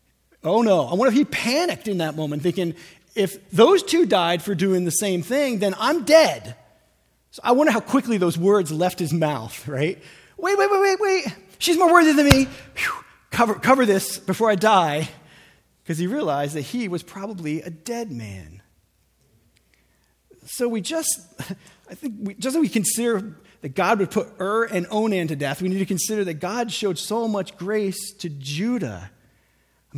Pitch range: 155-240 Hz